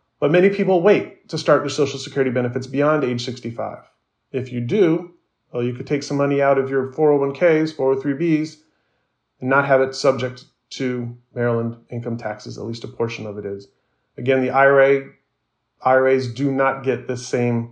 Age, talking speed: 30-49, 175 wpm